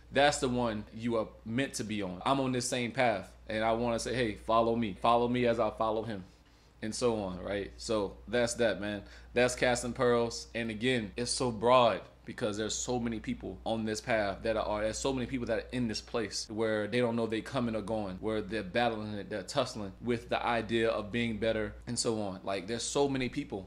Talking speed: 230 wpm